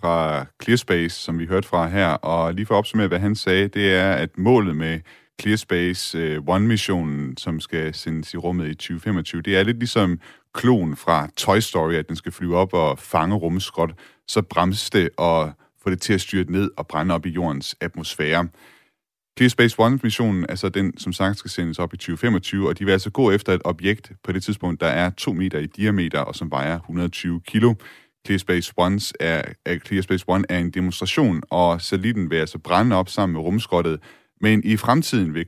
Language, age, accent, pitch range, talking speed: Danish, 30-49, native, 85-105 Hz, 195 wpm